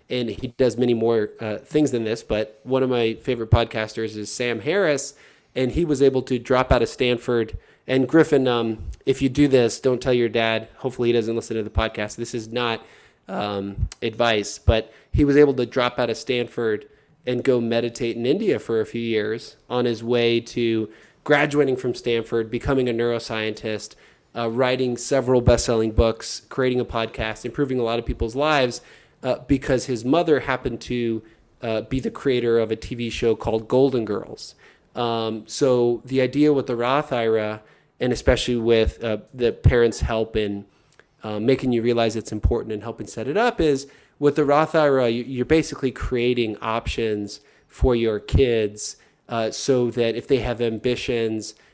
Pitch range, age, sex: 110-130 Hz, 20-39, male